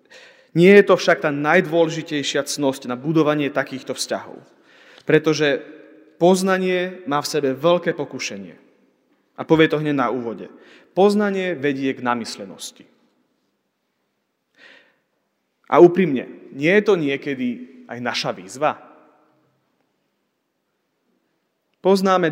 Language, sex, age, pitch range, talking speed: Slovak, male, 30-49, 130-175 Hz, 100 wpm